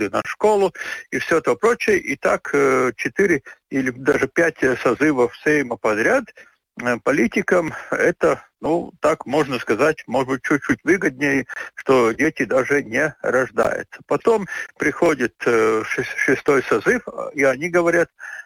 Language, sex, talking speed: Russian, male, 120 wpm